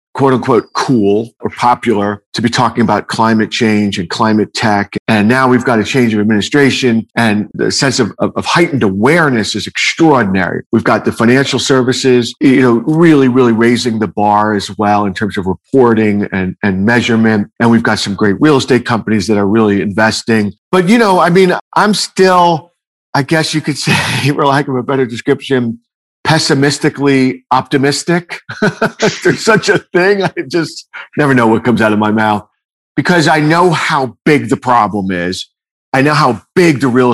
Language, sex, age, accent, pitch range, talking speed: English, male, 50-69, American, 110-150 Hz, 180 wpm